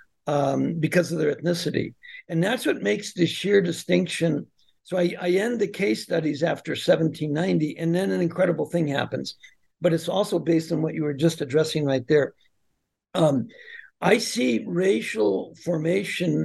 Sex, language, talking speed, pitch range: male, English, 160 wpm, 150-175 Hz